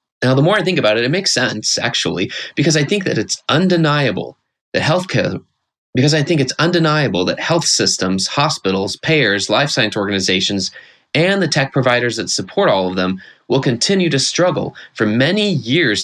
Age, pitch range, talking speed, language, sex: 20-39, 105-150 Hz, 180 wpm, English, male